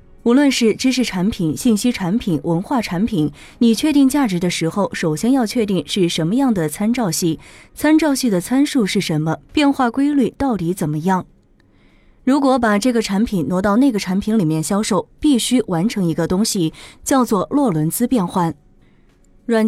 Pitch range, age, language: 170-245 Hz, 20-39, Chinese